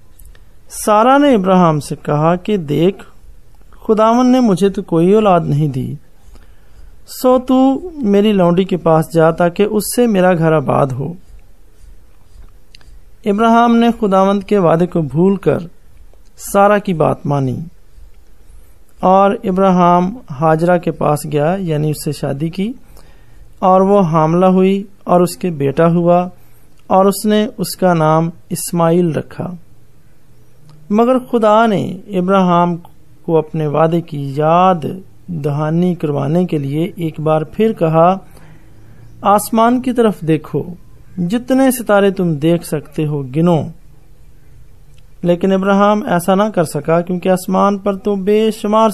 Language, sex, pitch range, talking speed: Hindi, male, 155-205 Hz, 125 wpm